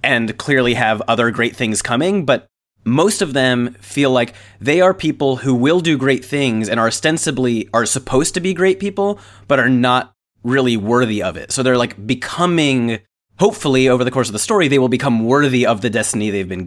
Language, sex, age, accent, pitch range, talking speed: English, male, 30-49, American, 110-140 Hz, 205 wpm